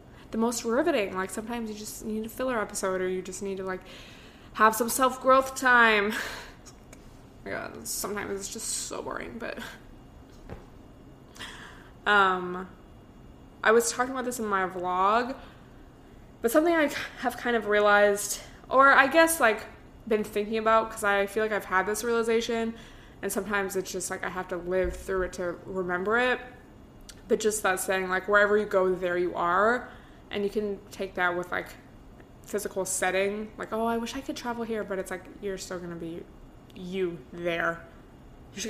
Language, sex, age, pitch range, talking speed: English, female, 20-39, 185-225 Hz, 175 wpm